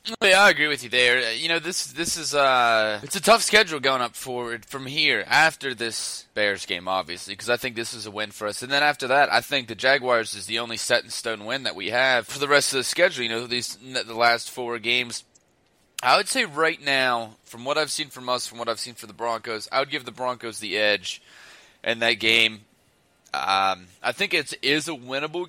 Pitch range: 110-135 Hz